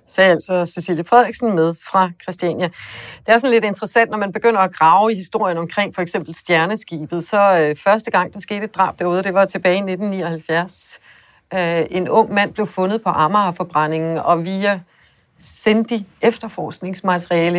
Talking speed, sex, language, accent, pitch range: 160 wpm, female, Danish, native, 170-210 Hz